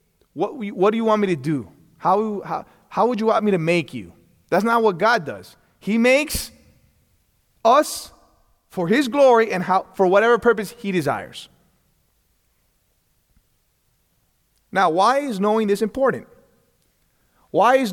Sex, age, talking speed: male, 30-49, 135 wpm